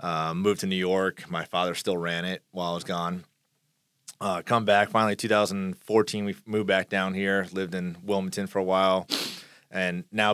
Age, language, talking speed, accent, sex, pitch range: 30-49, English, 185 wpm, American, male, 85-105 Hz